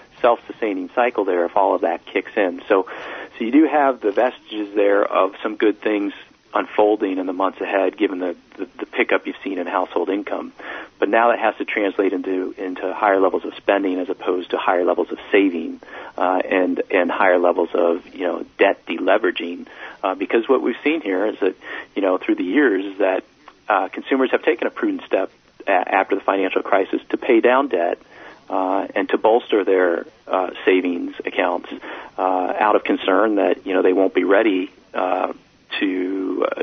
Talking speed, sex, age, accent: 190 wpm, male, 40-59, American